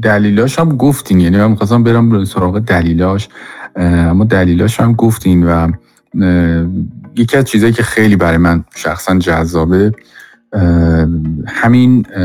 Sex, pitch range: male, 90-110 Hz